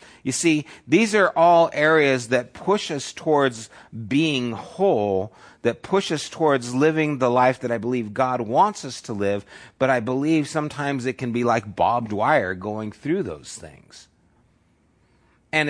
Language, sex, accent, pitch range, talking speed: English, male, American, 115-155 Hz, 160 wpm